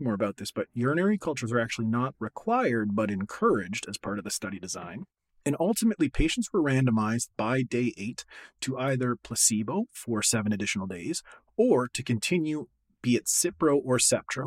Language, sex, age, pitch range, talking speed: English, male, 30-49, 110-135 Hz, 170 wpm